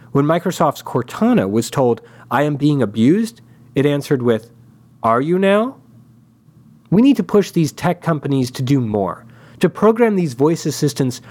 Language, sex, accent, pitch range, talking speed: English, male, American, 120-165 Hz, 160 wpm